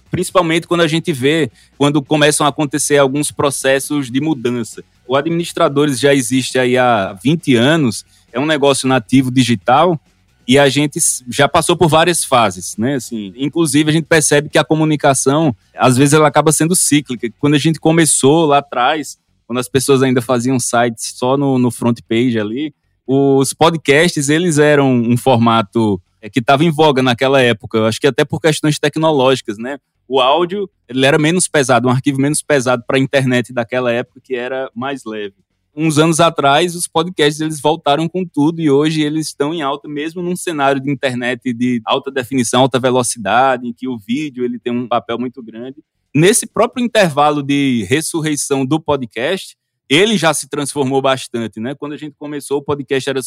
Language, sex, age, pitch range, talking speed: Portuguese, male, 20-39, 125-150 Hz, 175 wpm